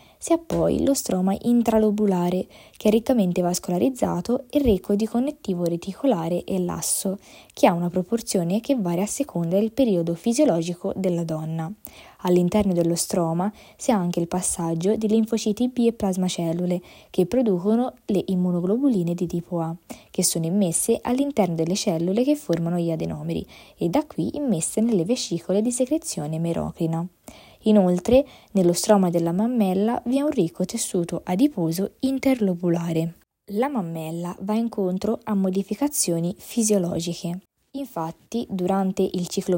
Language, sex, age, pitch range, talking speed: Italian, female, 20-39, 175-225 Hz, 140 wpm